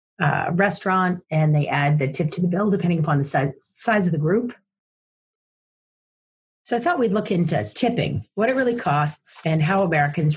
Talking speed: 185 wpm